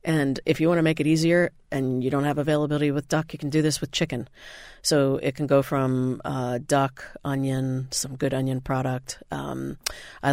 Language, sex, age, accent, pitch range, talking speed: English, female, 40-59, American, 130-150 Hz, 205 wpm